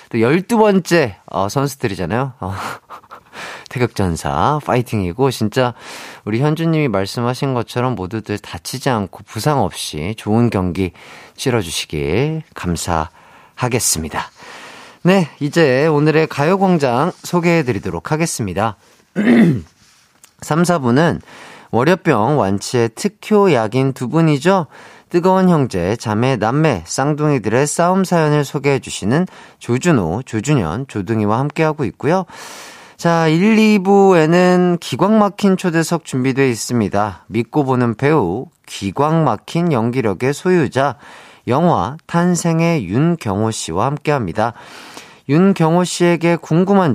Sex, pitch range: male, 115-170 Hz